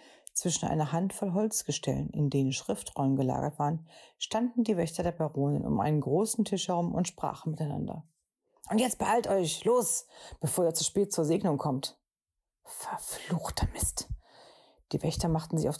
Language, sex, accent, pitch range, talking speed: German, female, German, 145-175 Hz, 155 wpm